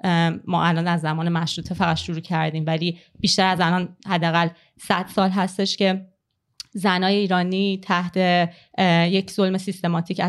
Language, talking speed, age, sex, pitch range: Persian, 135 wpm, 30-49, female, 175-210 Hz